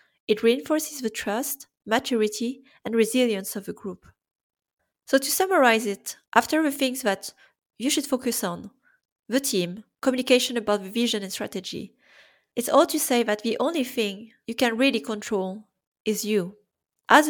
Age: 30-49